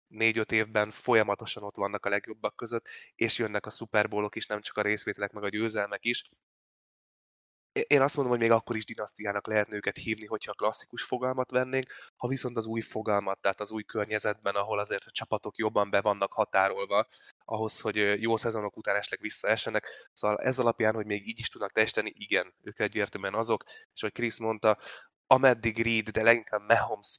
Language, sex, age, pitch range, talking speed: Hungarian, male, 20-39, 105-115 Hz, 185 wpm